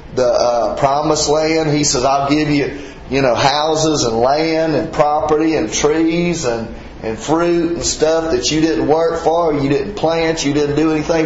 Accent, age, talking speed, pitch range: American, 30-49, 185 wpm, 130-155 Hz